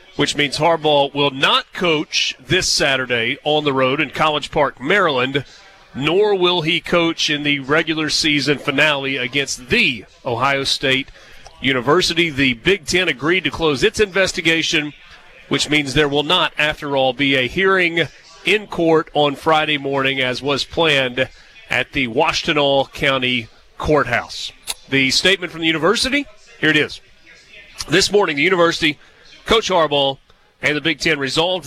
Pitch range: 140-170 Hz